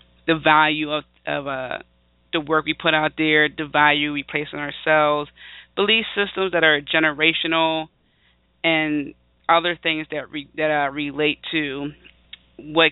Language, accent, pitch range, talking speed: English, American, 145-165 Hz, 150 wpm